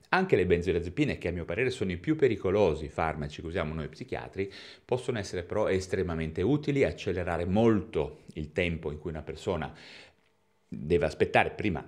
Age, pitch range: 30-49, 75-100 Hz